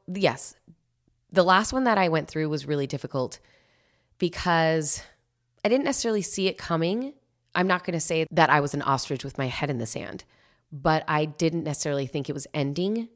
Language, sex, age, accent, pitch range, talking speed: English, female, 20-39, American, 140-165 Hz, 190 wpm